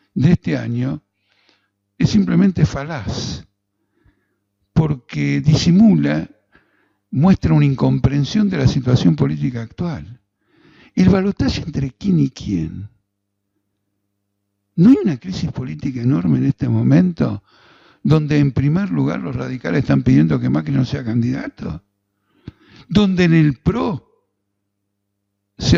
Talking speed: 115 wpm